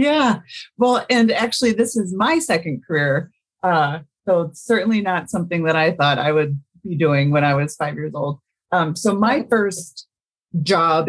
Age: 30-49